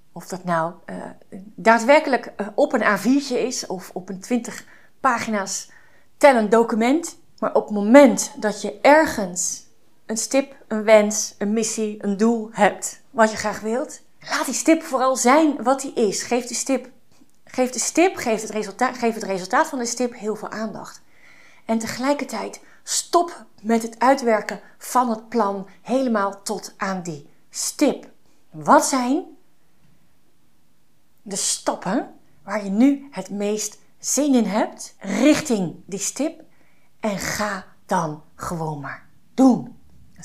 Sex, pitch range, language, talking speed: female, 195-255 Hz, Dutch, 140 wpm